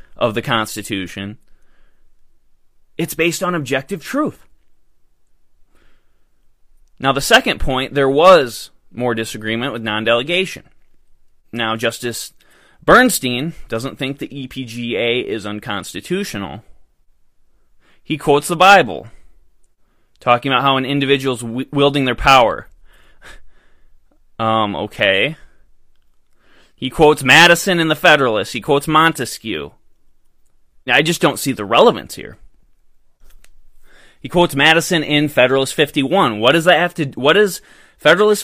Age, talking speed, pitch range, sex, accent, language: 20-39, 110 wpm, 115-165 Hz, male, American, English